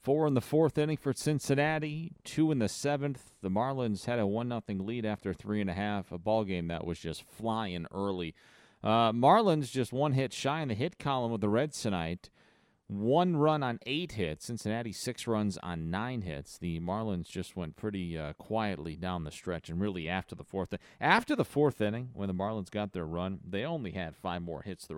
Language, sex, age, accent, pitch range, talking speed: English, male, 40-59, American, 85-115 Hz, 210 wpm